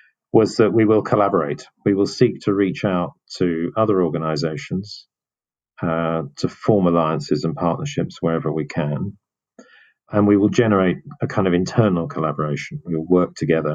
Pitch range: 80-110 Hz